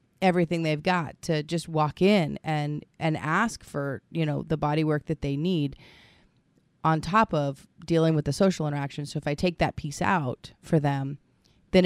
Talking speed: 185 wpm